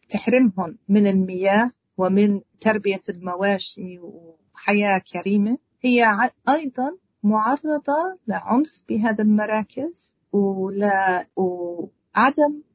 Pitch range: 200-250 Hz